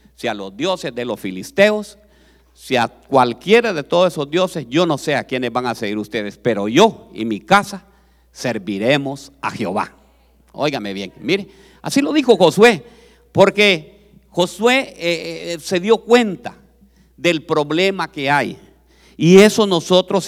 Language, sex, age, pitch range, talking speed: Spanish, male, 50-69, 125-195 Hz, 150 wpm